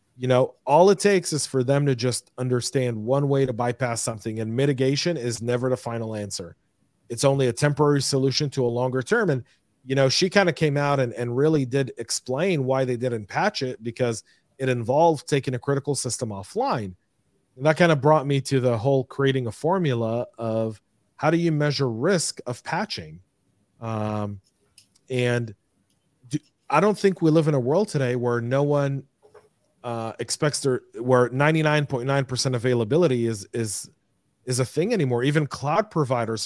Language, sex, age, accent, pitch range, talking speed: English, male, 40-59, American, 120-145 Hz, 175 wpm